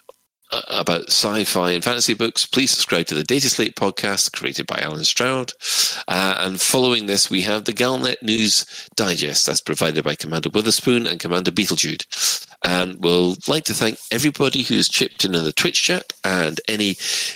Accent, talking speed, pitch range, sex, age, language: British, 165 wpm, 90-110 Hz, male, 40-59, English